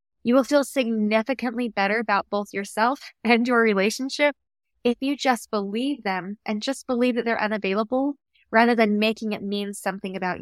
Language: English